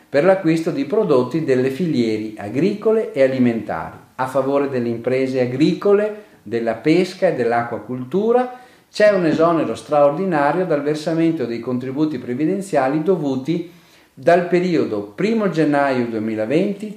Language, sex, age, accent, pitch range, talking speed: Italian, male, 40-59, native, 120-180 Hz, 115 wpm